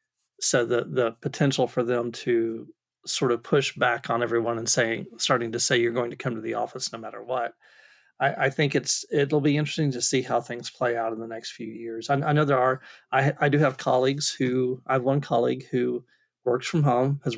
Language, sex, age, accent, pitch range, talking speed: English, male, 40-59, American, 120-145 Hz, 230 wpm